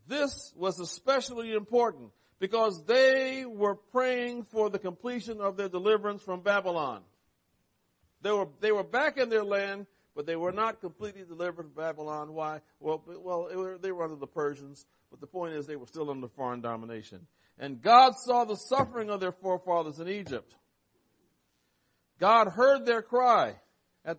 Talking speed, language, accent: 170 wpm, English, American